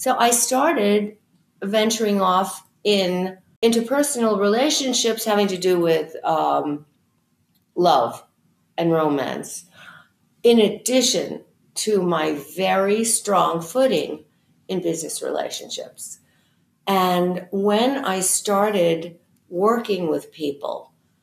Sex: female